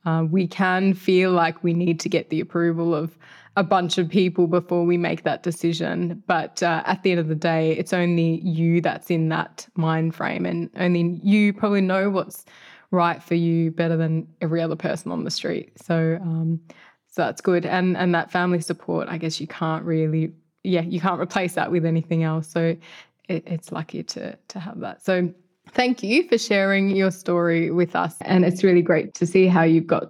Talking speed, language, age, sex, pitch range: 205 wpm, English, 20-39, female, 170-195 Hz